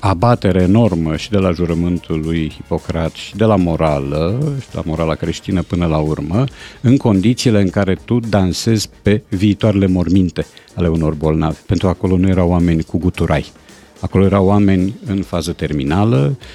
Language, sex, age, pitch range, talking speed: Romanian, male, 50-69, 90-115 Hz, 165 wpm